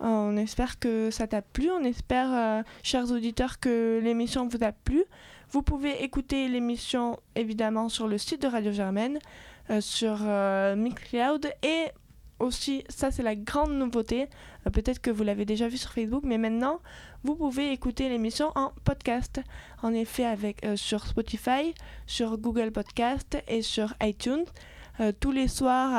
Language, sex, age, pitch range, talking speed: French, female, 20-39, 220-260 Hz, 160 wpm